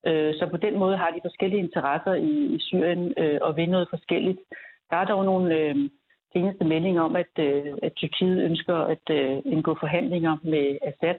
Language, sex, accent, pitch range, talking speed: Danish, female, native, 155-185 Hz, 190 wpm